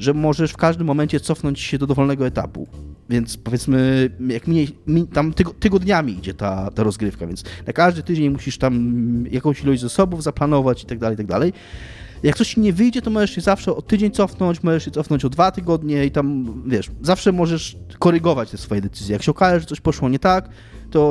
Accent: native